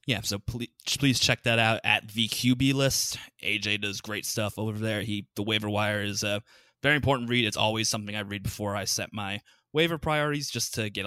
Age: 20-39